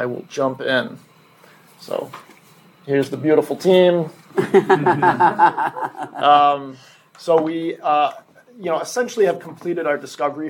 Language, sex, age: English, male, 30-49